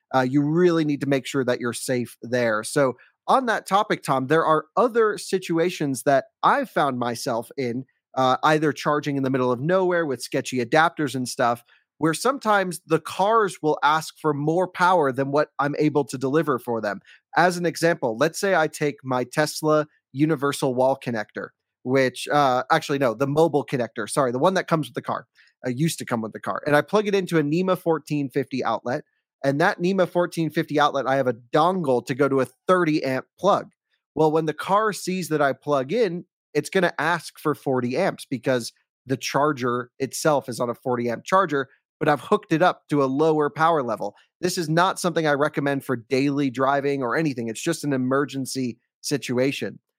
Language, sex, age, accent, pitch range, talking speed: English, male, 30-49, American, 130-165 Hz, 195 wpm